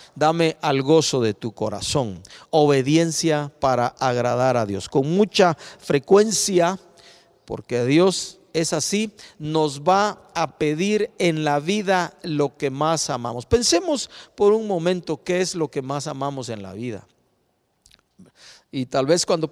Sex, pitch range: male, 145-190 Hz